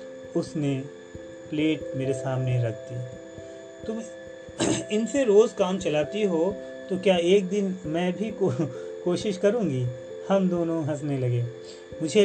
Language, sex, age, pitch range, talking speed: Urdu, male, 30-49, 125-175 Hz, 135 wpm